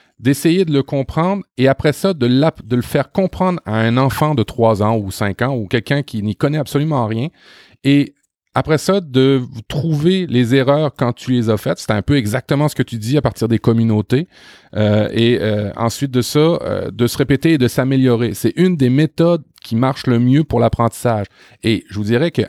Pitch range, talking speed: 110-140 Hz, 215 wpm